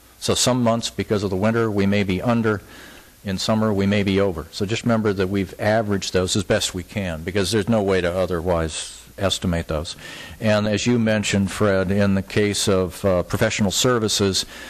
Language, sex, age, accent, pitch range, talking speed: English, male, 50-69, American, 95-105 Hz, 195 wpm